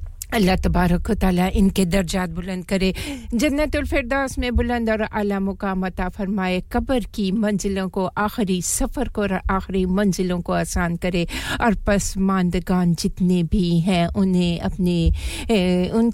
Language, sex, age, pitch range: English, female, 50-69, 175-210 Hz